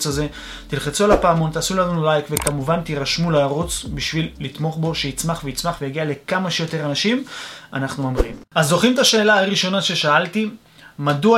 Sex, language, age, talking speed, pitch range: male, Hebrew, 30-49, 150 wpm, 150-210 Hz